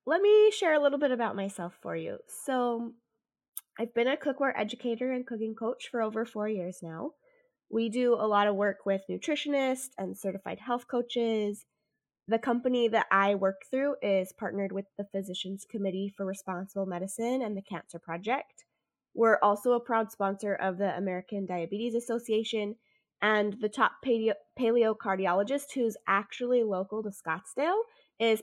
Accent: American